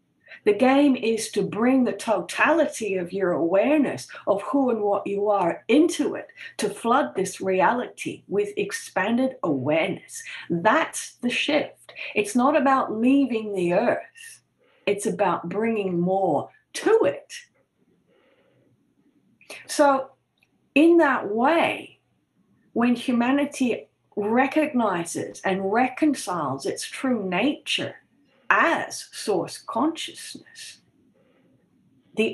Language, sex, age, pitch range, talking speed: English, female, 50-69, 205-280 Hz, 105 wpm